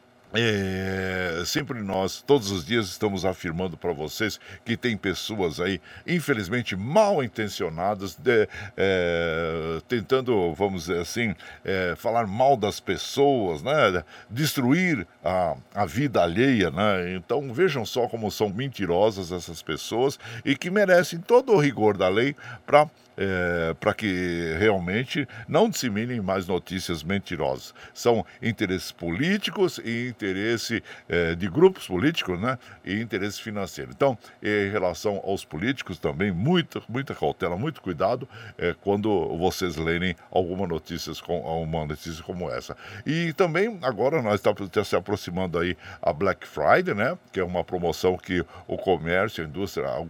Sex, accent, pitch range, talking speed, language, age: male, Brazilian, 90-125 Hz, 145 wpm, Portuguese, 60-79